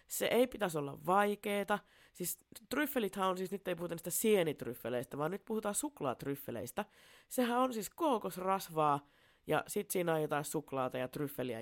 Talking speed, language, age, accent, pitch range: 155 wpm, Finnish, 30-49, native, 140-210 Hz